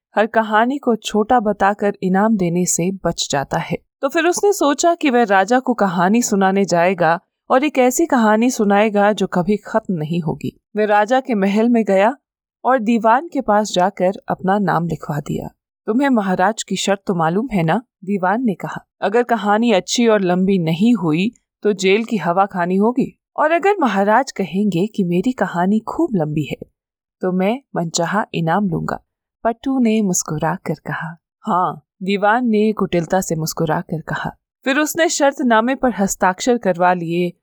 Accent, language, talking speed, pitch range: native, Hindi, 165 wpm, 180-230 Hz